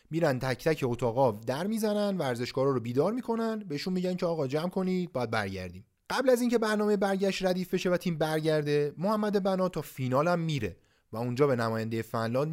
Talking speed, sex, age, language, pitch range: 185 wpm, male, 30-49, Persian, 120-175 Hz